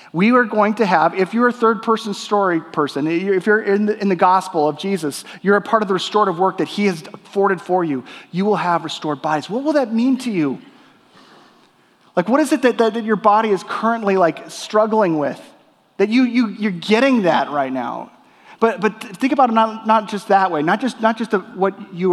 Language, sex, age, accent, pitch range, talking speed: English, male, 30-49, American, 175-220 Hz, 225 wpm